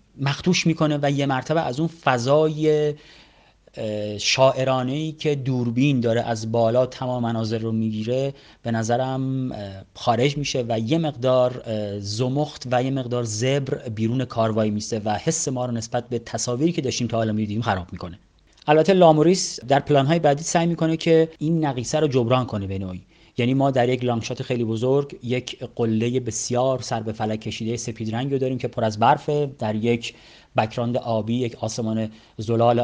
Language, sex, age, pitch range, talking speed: Persian, male, 30-49, 115-145 Hz, 165 wpm